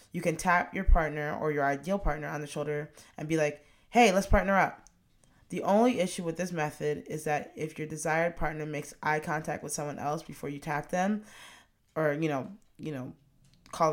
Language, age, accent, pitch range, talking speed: English, 20-39, American, 150-180 Hz, 205 wpm